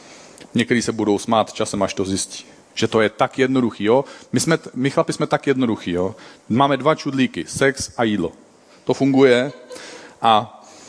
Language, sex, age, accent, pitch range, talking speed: Czech, male, 40-59, native, 120-155 Hz, 170 wpm